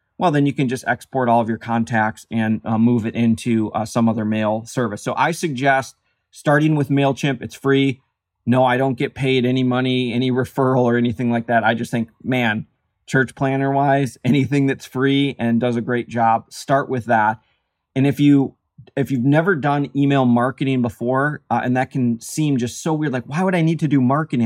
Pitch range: 115-140 Hz